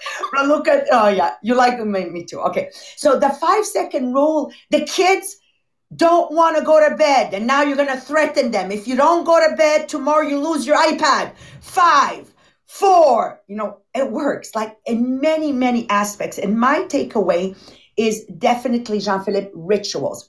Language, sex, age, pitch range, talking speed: English, female, 50-69, 210-285 Hz, 165 wpm